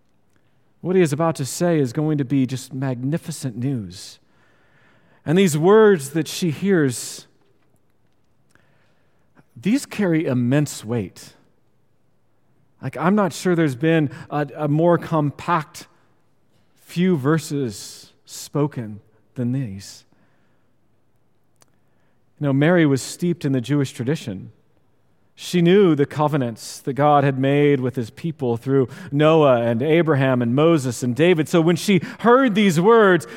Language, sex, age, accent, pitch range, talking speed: English, male, 40-59, American, 130-180 Hz, 130 wpm